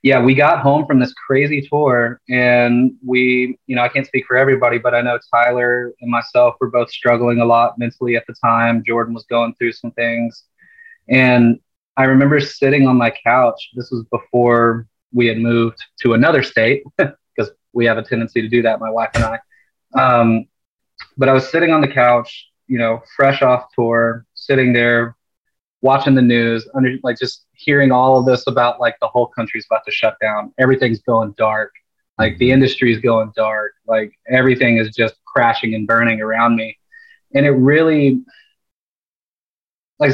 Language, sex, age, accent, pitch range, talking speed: English, male, 20-39, American, 115-130 Hz, 180 wpm